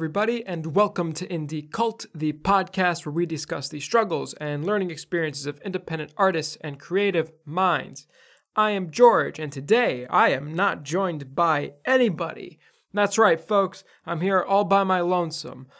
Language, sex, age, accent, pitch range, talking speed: English, male, 20-39, American, 165-195 Hz, 160 wpm